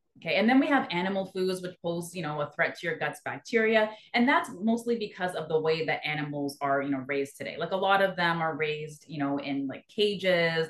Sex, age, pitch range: female, 30-49, 150-210 Hz